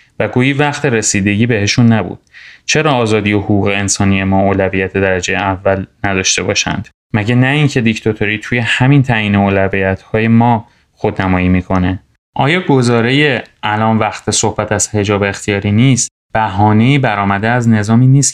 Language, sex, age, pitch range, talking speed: Persian, male, 30-49, 100-120 Hz, 135 wpm